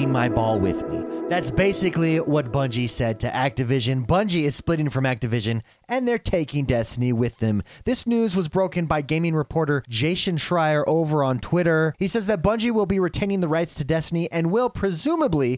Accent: American